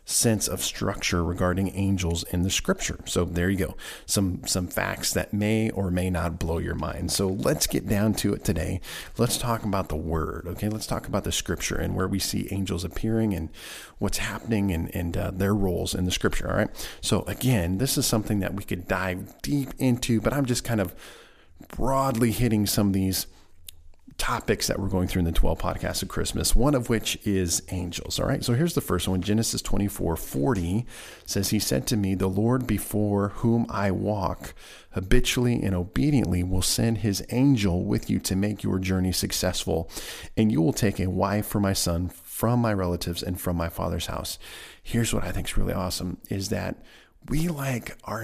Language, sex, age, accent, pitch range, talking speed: English, male, 40-59, American, 90-110 Hz, 200 wpm